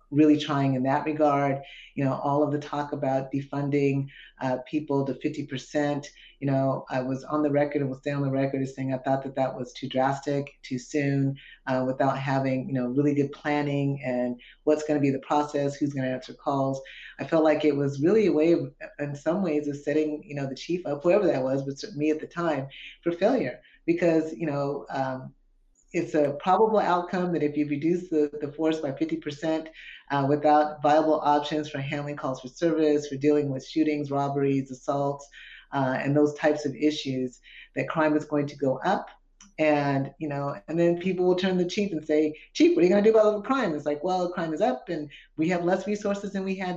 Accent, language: American, English